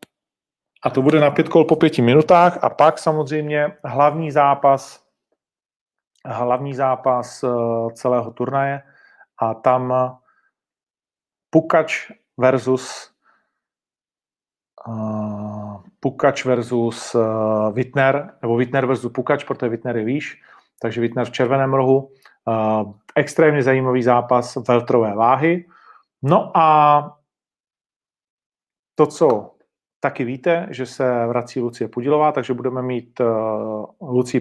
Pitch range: 125-145 Hz